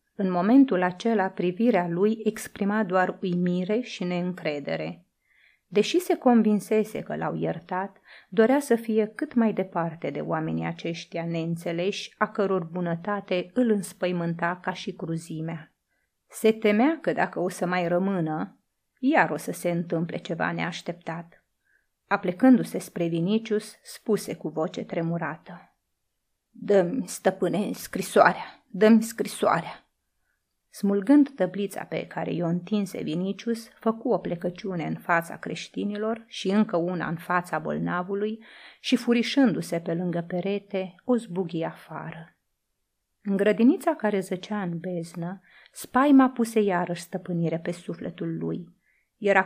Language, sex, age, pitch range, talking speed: Romanian, female, 30-49, 175-220 Hz, 125 wpm